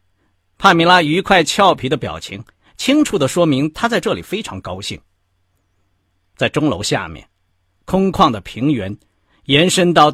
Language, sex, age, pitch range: Chinese, male, 50-69, 90-155 Hz